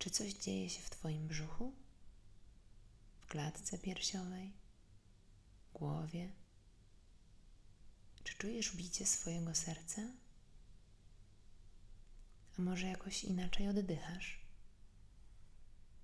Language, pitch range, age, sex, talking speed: Polish, 100-170 Hz, 20-39, female, 80 wpm